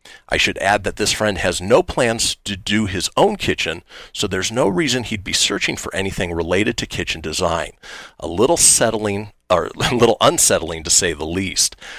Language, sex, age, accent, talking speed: English, male, 40-59, American, 190 wpm